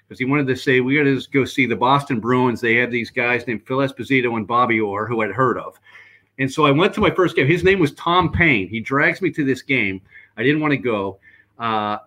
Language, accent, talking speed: English, American, 260 wpm